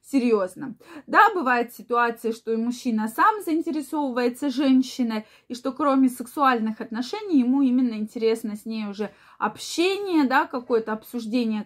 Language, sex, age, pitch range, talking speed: Russian, female, 20-39, 235-310 Hz, 130 wpm